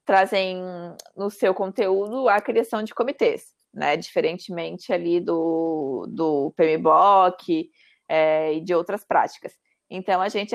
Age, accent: 20-39, Brazilian